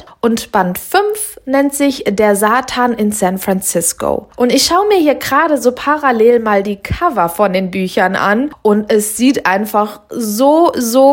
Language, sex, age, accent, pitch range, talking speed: German, female, 20-39, German, 210-280 Hz, 165 wpm